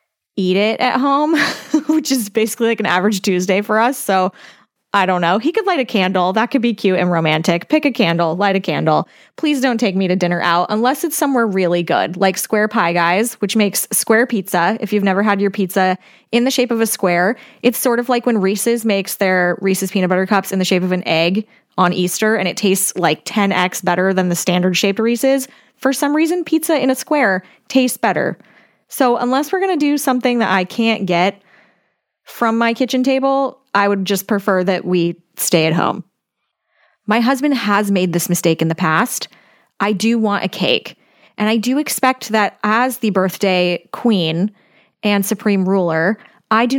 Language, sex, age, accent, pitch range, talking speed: English, female, 20-39, American, 185-250 Hz, 205 wpm